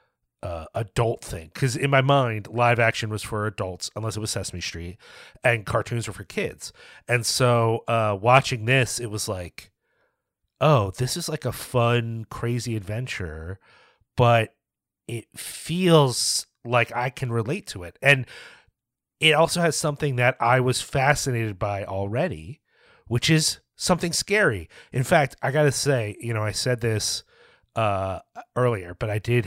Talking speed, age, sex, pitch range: 155 wpm, 30-49, male, 100-125 Hz